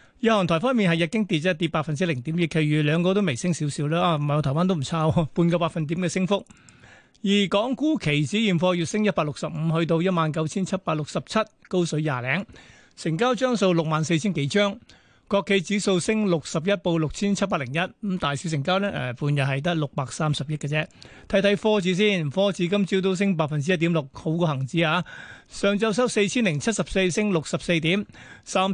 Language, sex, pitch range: Chinese, male, 160-200 Hz